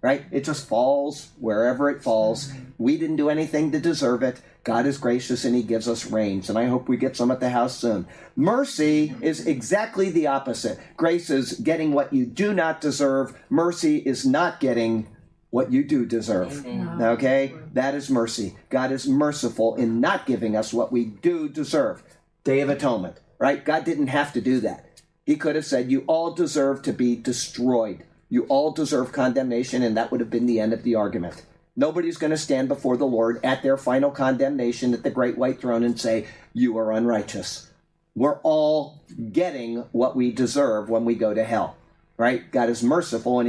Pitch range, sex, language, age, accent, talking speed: 120-160 Hz, male, English, 50-69, American, 190 wpm